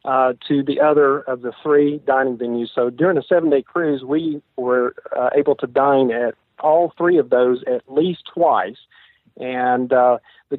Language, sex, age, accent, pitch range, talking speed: English, male, 50-69, American, 125-145 Hz, 175 wpm